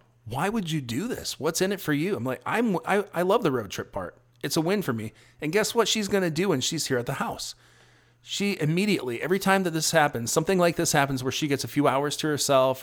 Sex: male